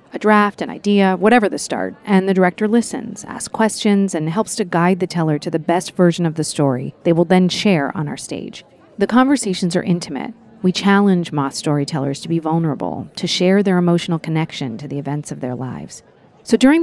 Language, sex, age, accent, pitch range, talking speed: English, female, 40-59, American, 160-215 Hz, 205 wpm